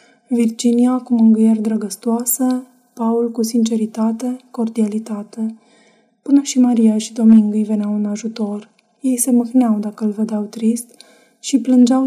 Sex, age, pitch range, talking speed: female, 20-39, 220-240 Hz, 130 wpm